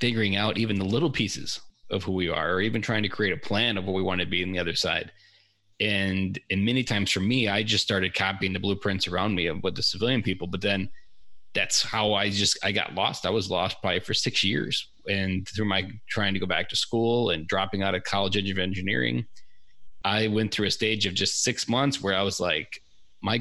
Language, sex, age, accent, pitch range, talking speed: English, male, 30-49, American, 95-110 Hz, 235 wpm